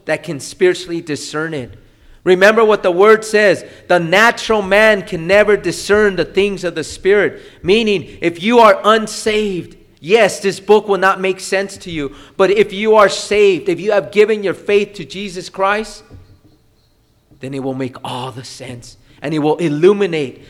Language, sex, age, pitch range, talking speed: English, male, 30-49, 135-210 Hz, 175 wpm